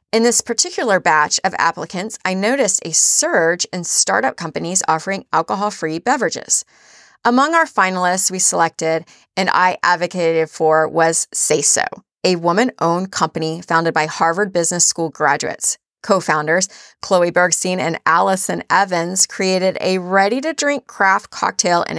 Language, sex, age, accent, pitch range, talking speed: English, female, 30-49, American, 170-215 Hz, 135 wpm